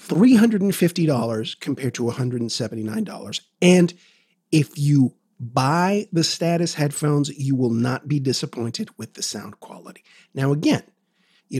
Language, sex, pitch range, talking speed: English, male, 135-190 Hz, 115 wpm